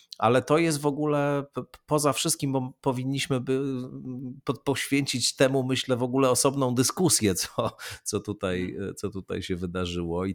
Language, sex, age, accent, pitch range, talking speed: Polish, male, 40-59, native, 90-110 Hz, 130 wpm